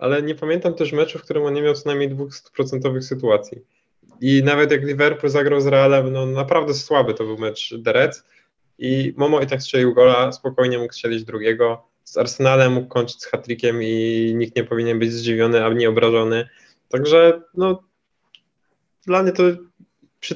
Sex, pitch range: male, 125-150 Hz